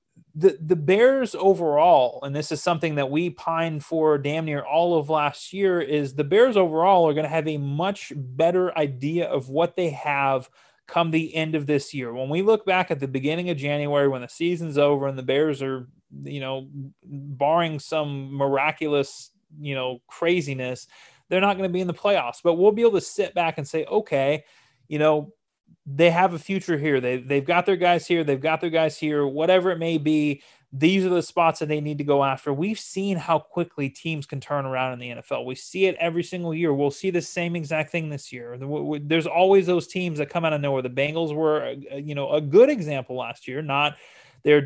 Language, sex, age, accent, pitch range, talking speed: English, male, 30-49, American, 140-170 Hz, 215 wpm